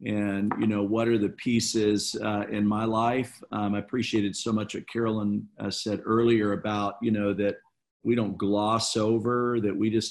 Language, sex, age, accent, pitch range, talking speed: English, male, 50-69, American, 100-115 Hz, 190 wpm